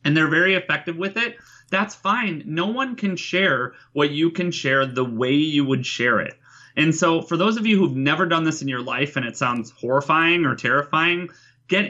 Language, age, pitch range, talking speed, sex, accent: English, 30-49, 125-170 Hz, 210 wpm, male, American